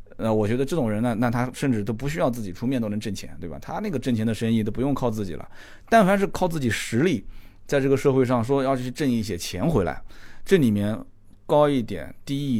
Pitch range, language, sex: 105-135 Hz, Chinese, male